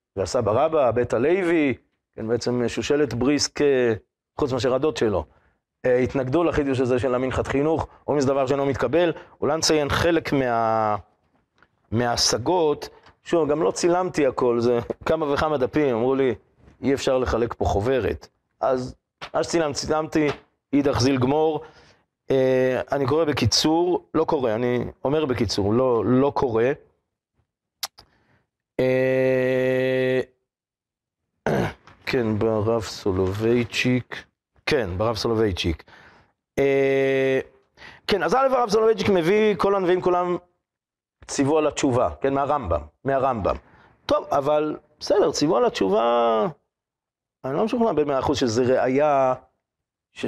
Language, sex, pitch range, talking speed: Hebrew, male, 120-150 Hz, 115 wpm